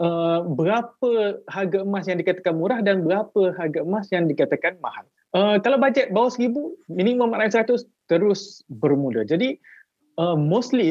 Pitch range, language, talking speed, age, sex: 145-200 Hz, Malay, 145 wpm, 20-39, male